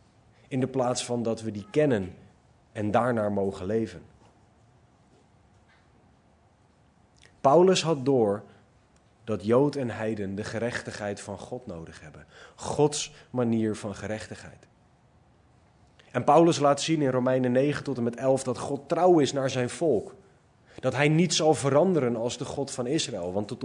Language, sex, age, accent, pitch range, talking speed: Dutch, male, 30-49, Dutch, 105-135 Hz, 150 wpm